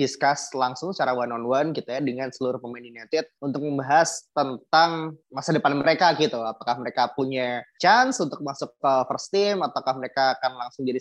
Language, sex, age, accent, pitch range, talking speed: Indonesian, male, 20-39, native, 125-160 Hz, 185 wpm